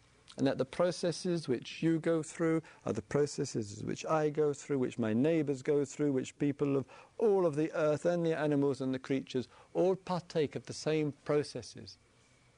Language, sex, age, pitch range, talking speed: English, male, 50-69, 120-165 Hz, 185 wpm